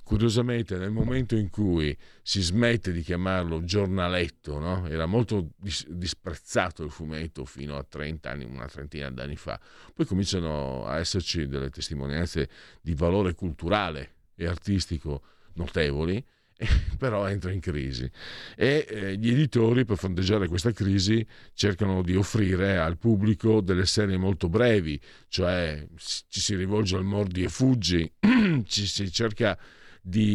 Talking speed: 140 wpm